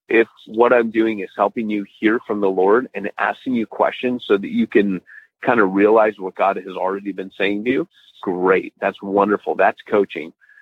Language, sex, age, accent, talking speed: English, male, 40-59, American, 200 wpm